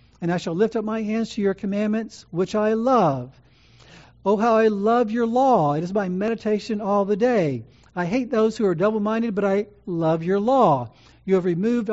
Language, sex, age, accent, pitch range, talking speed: English, male, 60-79, American, 160-225 Hz, 200 wpm